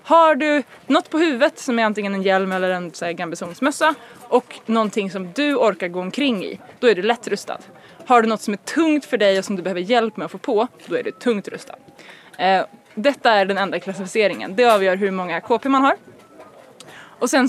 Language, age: Swedish, 20-39